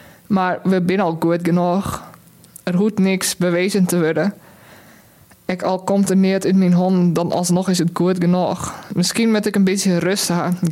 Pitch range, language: 170-185 Hz, Dutch